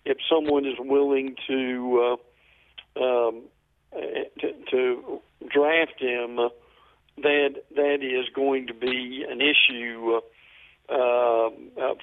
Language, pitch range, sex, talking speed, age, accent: English, 125-155 Hz, male, 105 wpm, 50-69, American